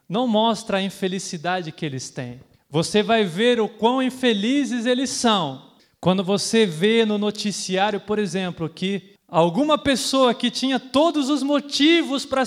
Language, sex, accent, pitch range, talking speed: Portuguese, male, Brazilian, 180-265 Hz, 150 wpm